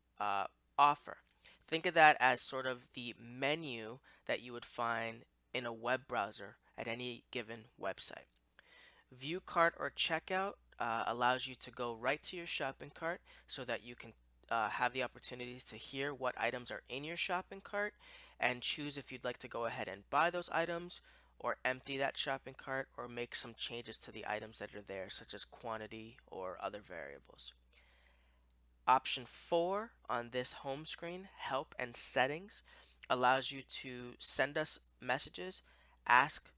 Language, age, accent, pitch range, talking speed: English, 20-39, American, 110-145 Hz, 165 wpm